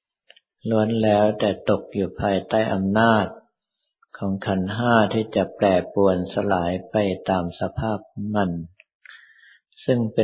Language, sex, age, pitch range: Thai, male, 50-69, 95-115 Hz